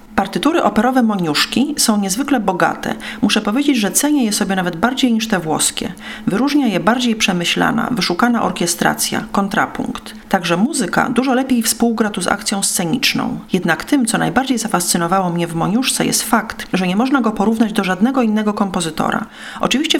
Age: 40-59